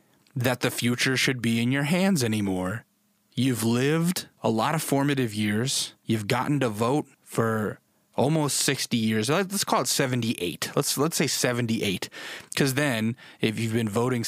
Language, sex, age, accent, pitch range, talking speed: English, male, 20-39, American, 115-165 Hz, 160 wpm